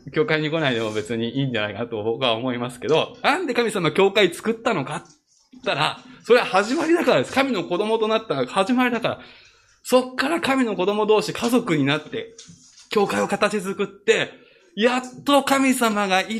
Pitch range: 160-240 Hz